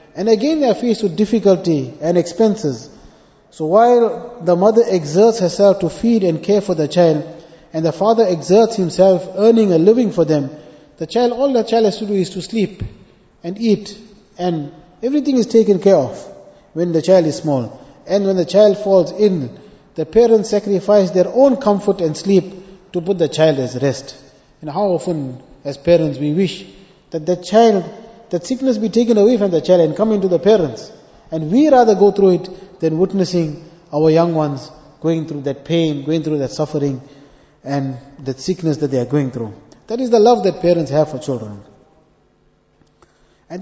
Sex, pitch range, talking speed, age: male, 155-205 Hz, 185 wpm, 30-49